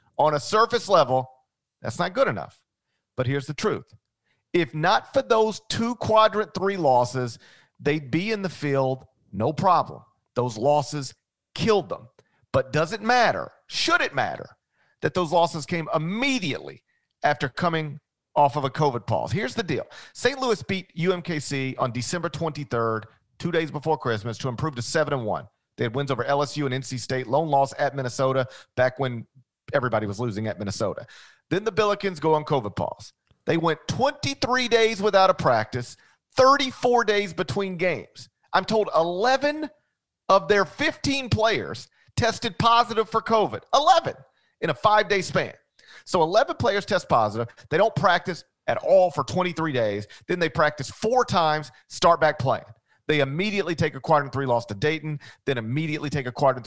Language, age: English, 40-59